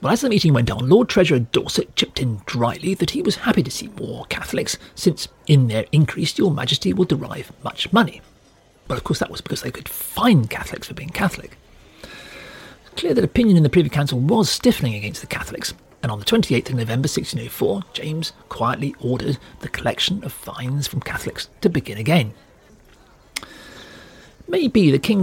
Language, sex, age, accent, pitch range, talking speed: English, male, 40-59, British, 120-175 Hz, 185 wpm